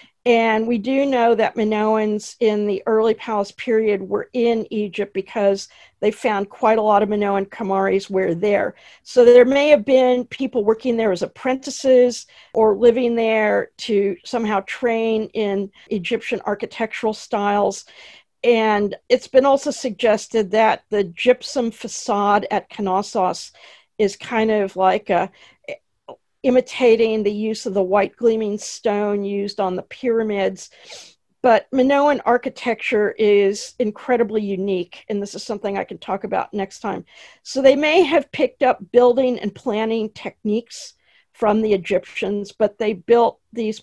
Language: English